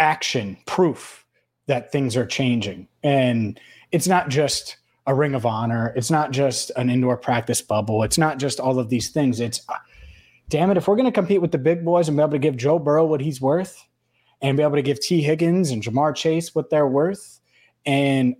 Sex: male